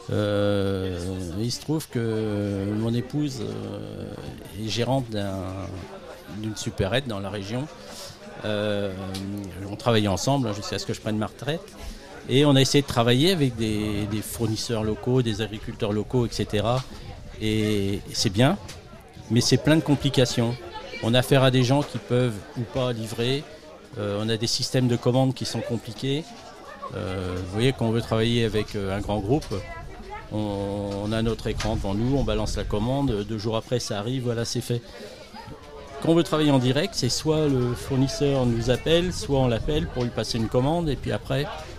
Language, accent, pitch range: French, French, 105-130 Hz